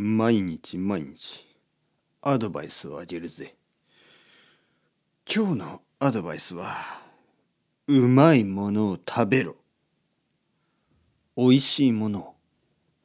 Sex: male